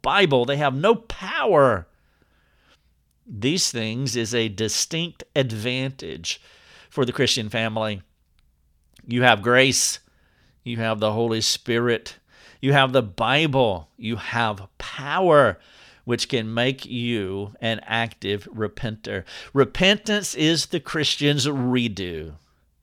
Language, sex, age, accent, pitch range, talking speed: English, male, 50-69, American, 105-140 Hz, 110 wpm